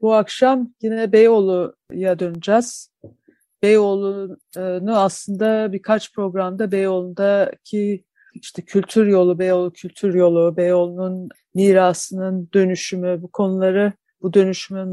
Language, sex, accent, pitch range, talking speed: Turkish, female, native, 180-215 Hz, 90 wpm